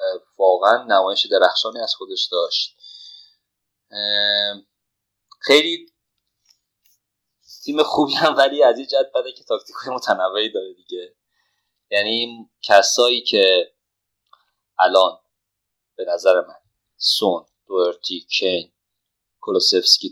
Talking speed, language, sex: 90 wpm, Persian, male